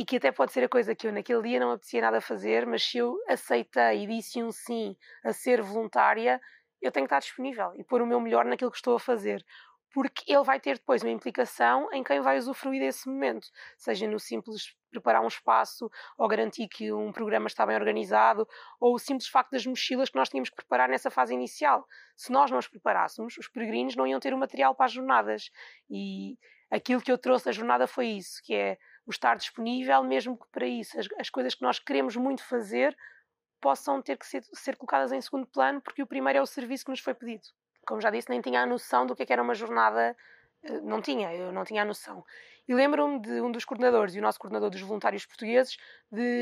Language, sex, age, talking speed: Portuguese, female, 20-39, 225 wpm